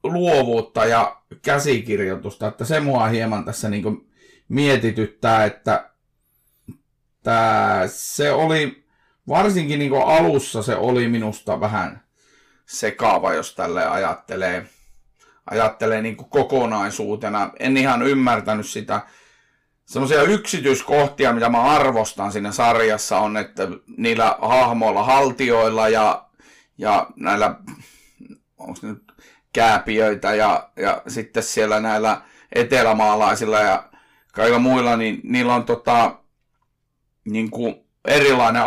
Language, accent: Finnish, native